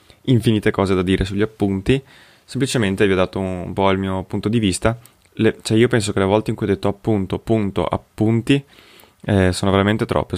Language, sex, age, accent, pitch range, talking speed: Italian, male, 20-39, native, 95-115 Hz, 200 wpm